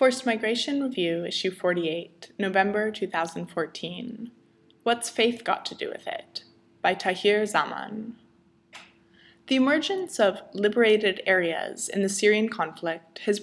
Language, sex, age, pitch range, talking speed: English, female, 20-39, 180-225 Hz, 120 wpm